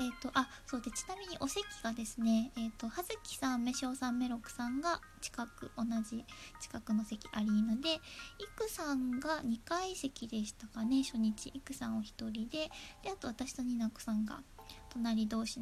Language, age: Japanese, 20-39